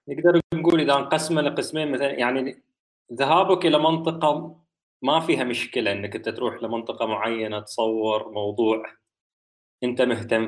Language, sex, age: Arabic, male, 20-39